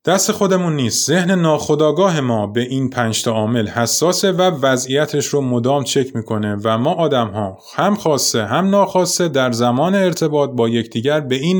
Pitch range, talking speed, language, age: 115-150 Hz, 165 wpm, Persian, 30-49